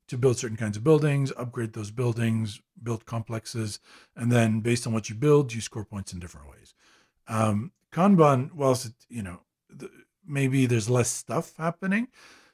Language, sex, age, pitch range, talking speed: English, male, 50-69, 115-140 Hz, 170 wpm